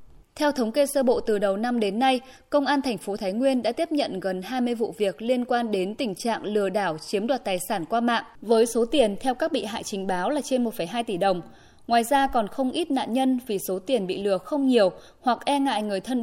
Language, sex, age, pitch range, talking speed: Vietnamese, female, 20-39, 200-270 Hz, 255 wpm